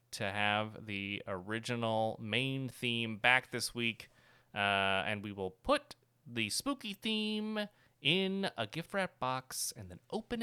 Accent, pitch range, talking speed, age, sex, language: American, 105-145 Hz, 145 wpm, 30-49, male, English